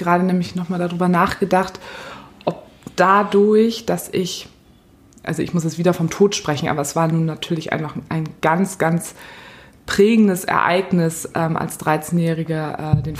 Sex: female